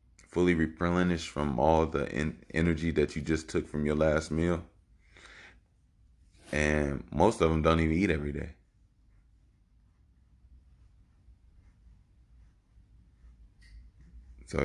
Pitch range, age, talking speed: 75-85 Hz, 30-49, 100 wpm